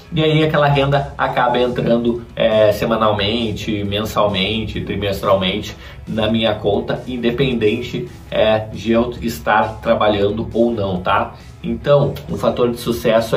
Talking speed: 110 wpm